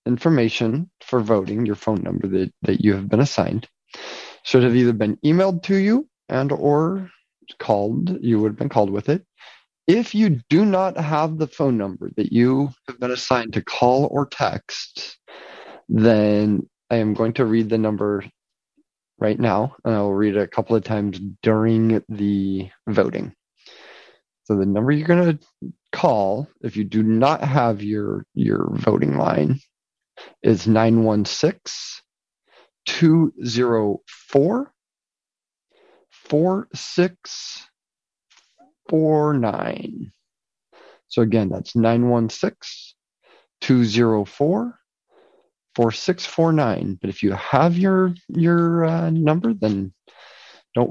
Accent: American